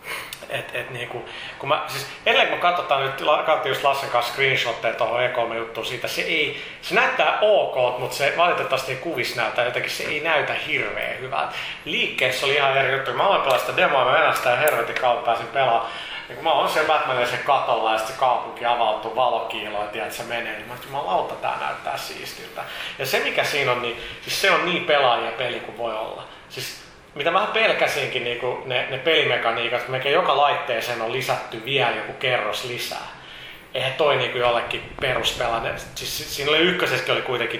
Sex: male